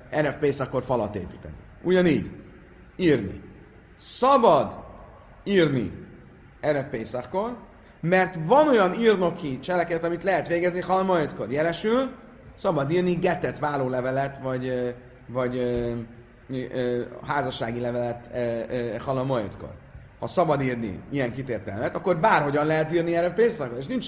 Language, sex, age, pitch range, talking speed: Hungarian, male, 30-49, 120-160 Hz, 125 wpm